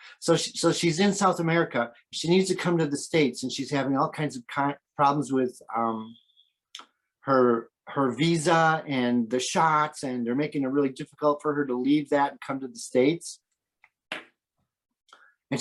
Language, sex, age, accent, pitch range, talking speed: English, male, 40-59, American, 145-195 Hz, 180 wpm